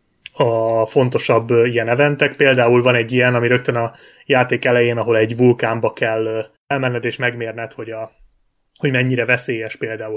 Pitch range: 115-130 Hz